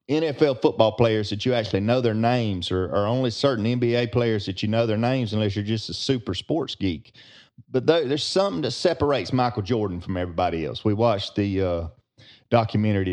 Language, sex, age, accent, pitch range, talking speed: English, male, 30-49, American, 105-135 Hz, 200 wpm